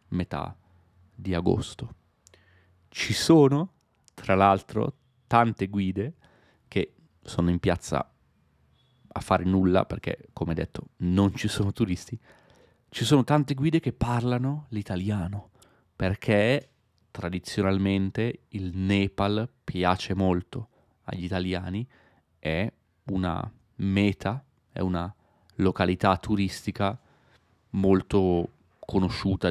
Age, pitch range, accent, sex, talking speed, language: 30-49, 90-105 Hz, native, male, 95 wpm, Italian